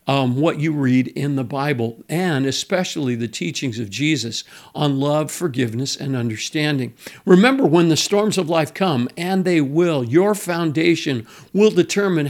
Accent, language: American, English